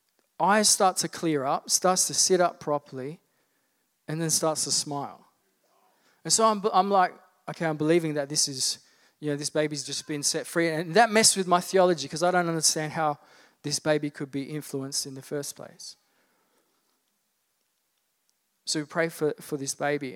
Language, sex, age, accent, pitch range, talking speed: English, male, 20-39, Australian, 145-180 Hz, 180 wpm